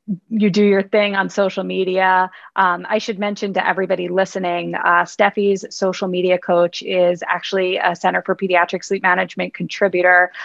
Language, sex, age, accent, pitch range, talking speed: English, female, 20-39, American, 180-205 Hz, 160 wpm